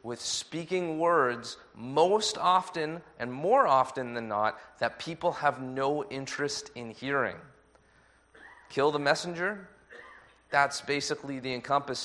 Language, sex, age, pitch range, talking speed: English, male, 30-49, 120-150 Hz, 120 wpm